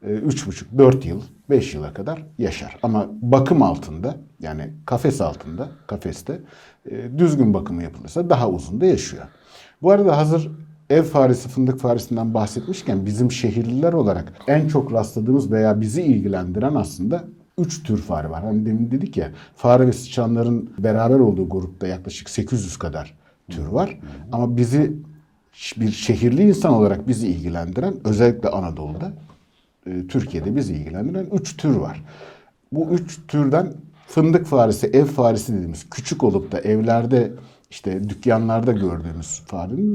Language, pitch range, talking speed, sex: Turkish, 100-150 Hz, 135 wpm, male